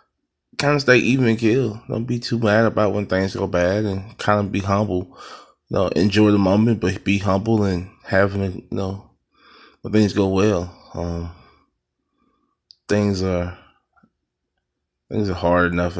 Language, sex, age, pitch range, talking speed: English, male, 20-39, 85-105 Hz, 160 wpm